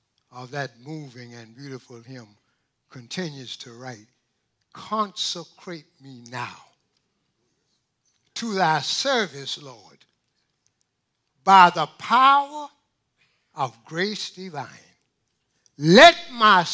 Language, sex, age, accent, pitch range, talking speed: English, male, 60-79, American, 125-175 Hz, 85 wpm